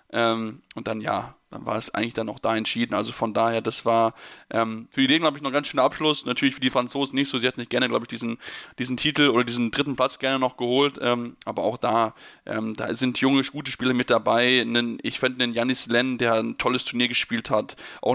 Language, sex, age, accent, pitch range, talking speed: German, male, 10-29, German, 115-135 Hz, 250 wpm